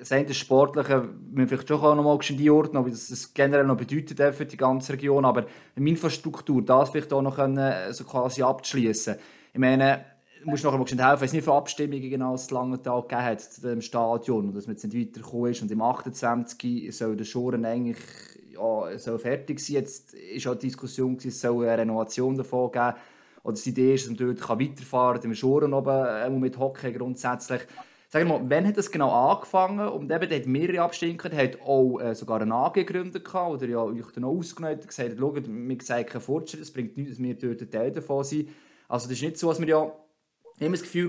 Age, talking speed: 20-39, 220 wpm